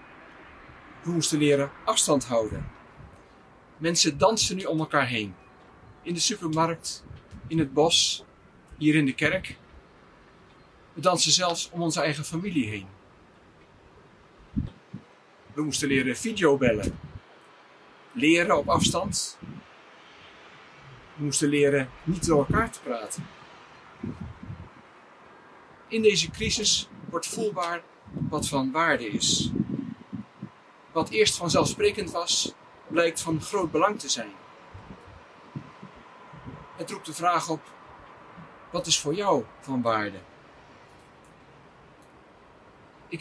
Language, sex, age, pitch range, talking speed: Dutch, male, 50-69, 140-170 Hz, 105 wpm